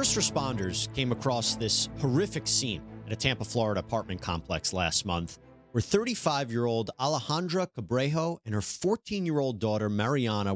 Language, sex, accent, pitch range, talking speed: English, male, American, 105-150 Hz, 135 wpm